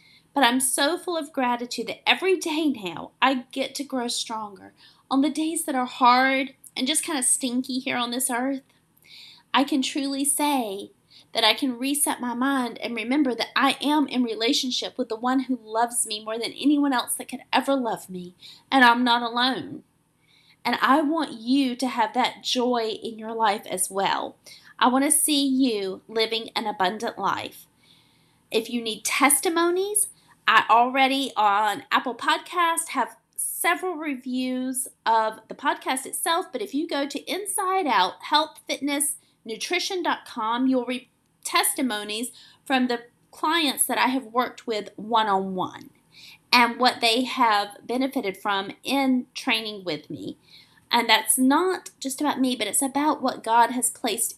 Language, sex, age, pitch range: English, female, 30-49, 230-285 Hz